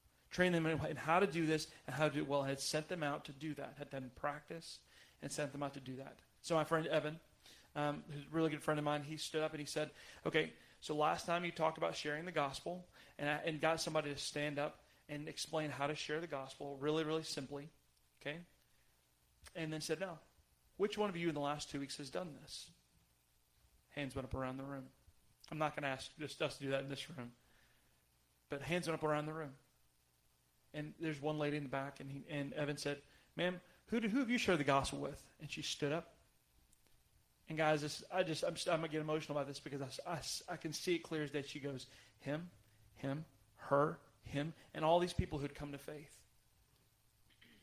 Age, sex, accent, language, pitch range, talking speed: 30-49, male, American, English, 130-160 Hz, 225 wpm